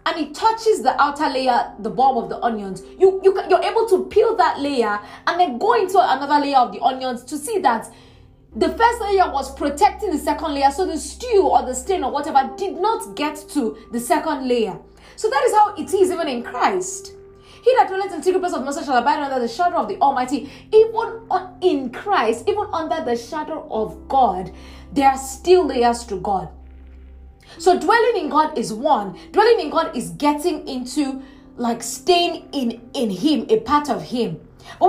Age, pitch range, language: 30-49, 245-375 Hz, English